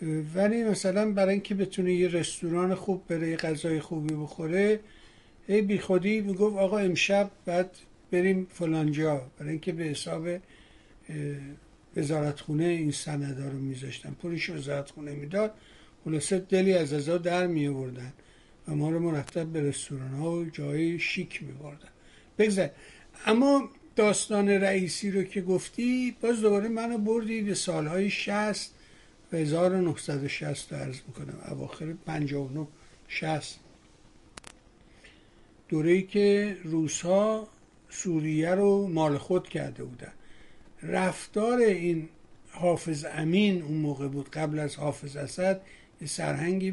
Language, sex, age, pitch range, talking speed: Persian, male, 60-79, 155-195 Hz, 120 wpm